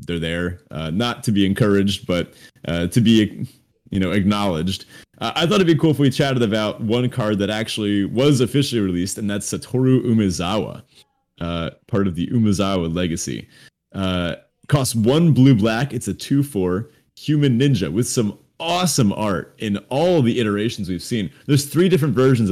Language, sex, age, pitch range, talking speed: English, male, 30-49, 100-135 Hz, 175 wpm